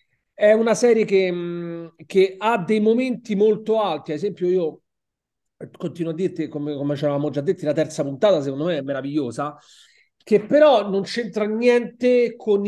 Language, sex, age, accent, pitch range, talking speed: Italian, male, 40-59, native, 170-220 Hz, 165 wpm